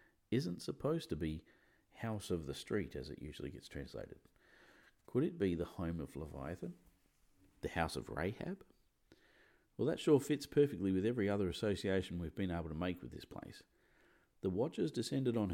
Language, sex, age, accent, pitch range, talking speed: English, male, 50-69, Australian, 85-115 Hz, 175 wpm